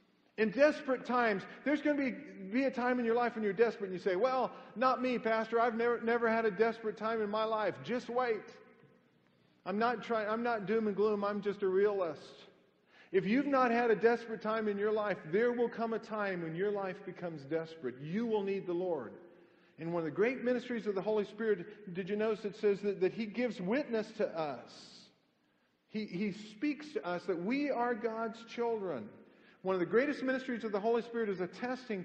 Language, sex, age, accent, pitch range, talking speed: English, male, 50-69, American, 195-240 Hz, 215 wpm